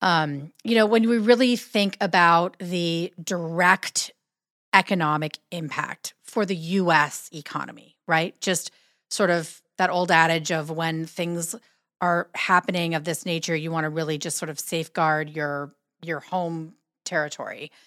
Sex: female